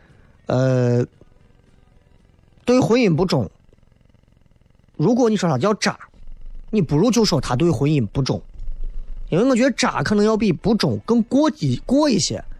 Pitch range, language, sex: 125-190 Hz, Chinese, male